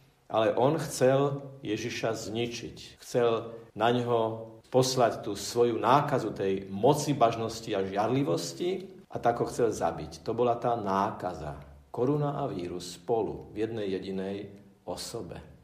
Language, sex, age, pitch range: Slovak, male, 50-69, 110-135 Hz